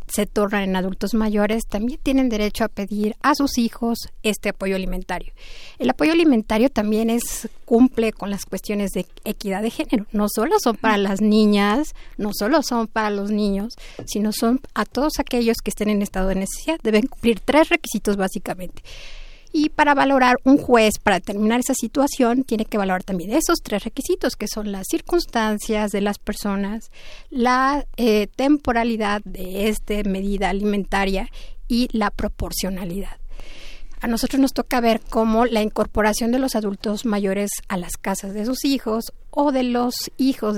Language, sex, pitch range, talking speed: Spanish, female, 205-240 Hz, 165 wpm